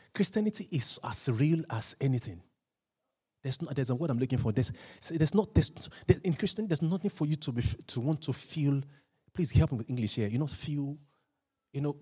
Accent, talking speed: Nigerian, 205 wpm